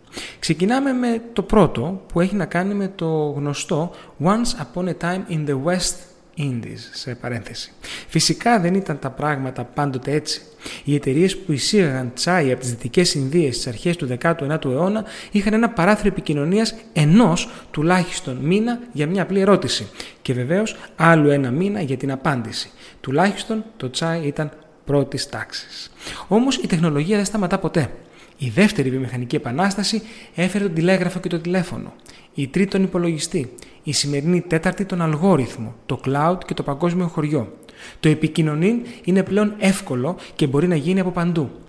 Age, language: 30-49, Greek